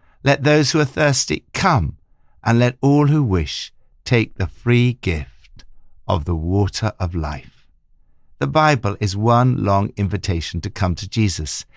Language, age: English, 60-79